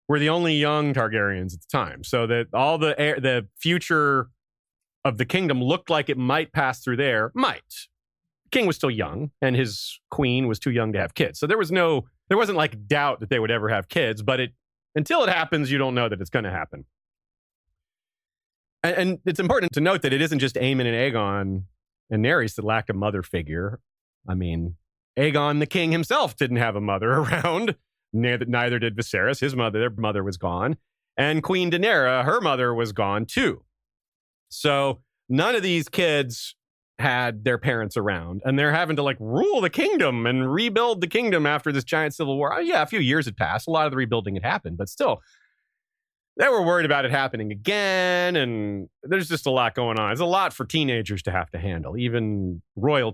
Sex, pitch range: male, 110-155 Hz